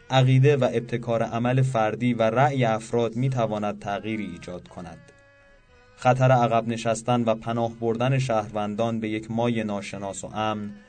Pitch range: 105-125 Hz